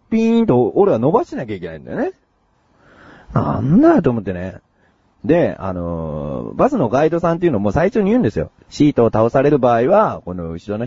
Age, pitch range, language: 40-59, 90-150 Hz, Japanese